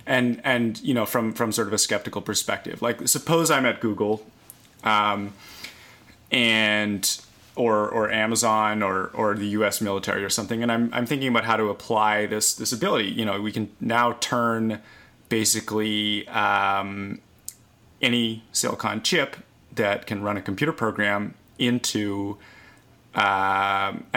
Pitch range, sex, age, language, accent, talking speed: 105-115 Hz, male, 30-49, English, American, 145 wpm